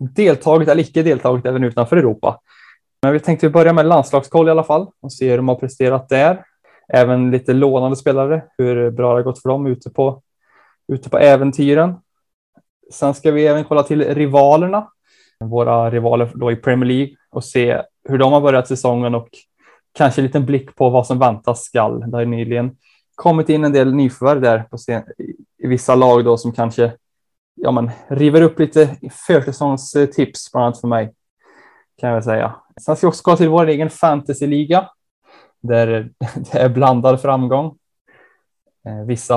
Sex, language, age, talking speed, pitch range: male, Swedish, 10-29, 170 wpm, 120-145 Hz